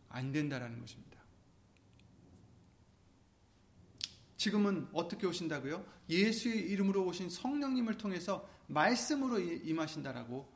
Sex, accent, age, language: male, native, 30-49, Korean